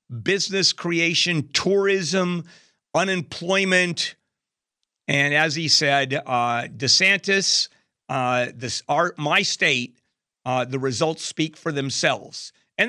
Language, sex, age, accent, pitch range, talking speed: English, male, 50-69, American, 145-190 Hz, 95 wpm